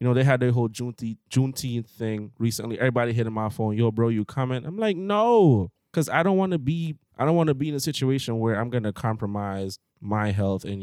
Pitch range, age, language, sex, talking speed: 105-130 Hz, 20-39, English, male, 210 wpm